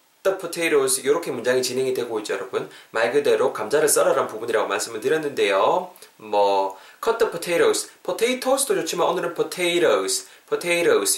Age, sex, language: 20-39, male, Korean